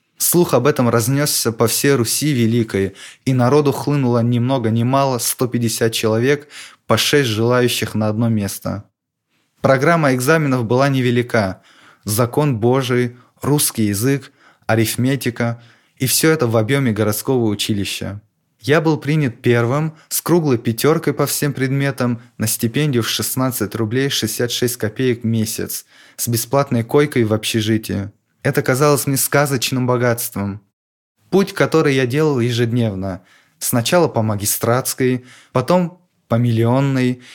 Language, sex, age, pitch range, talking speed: Russian, male, 20-39, 115-140 Hz, 125 wpm